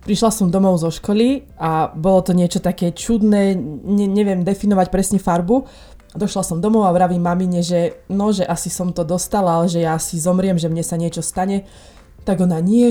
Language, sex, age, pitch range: Slovak, female, 20-39, 175-200 Hz